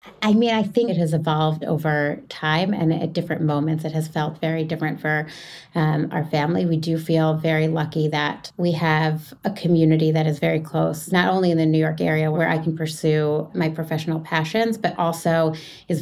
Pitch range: 155-175 Hz